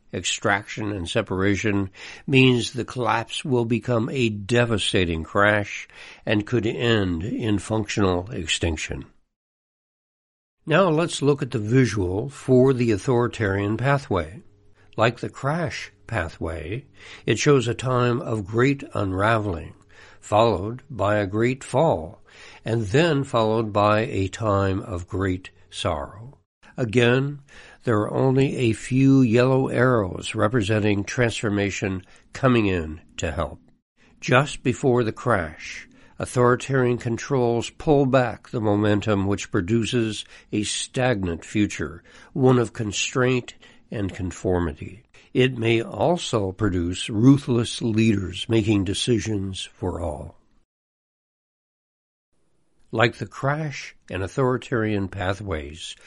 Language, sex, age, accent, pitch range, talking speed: English, male, 60-79, American, 100-125 Hz, 110 wpm